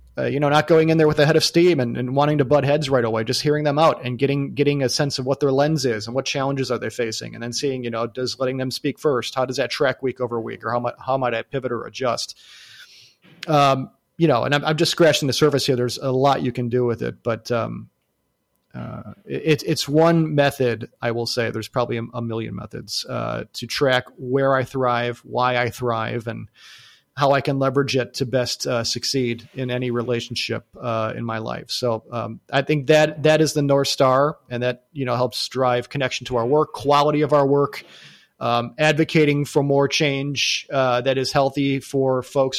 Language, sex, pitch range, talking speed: English, male, 120-145 Hz, 225 wpm